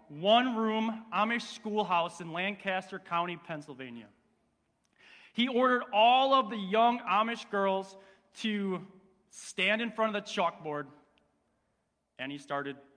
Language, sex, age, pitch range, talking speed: English, male, 30-49, 170-220 Hz, 115 wpm